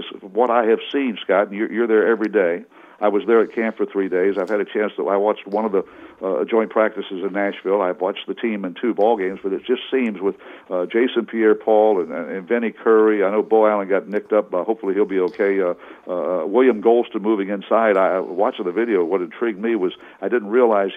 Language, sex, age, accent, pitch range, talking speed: English, male, 60-79, American, 110-145 Hz, 240 wpm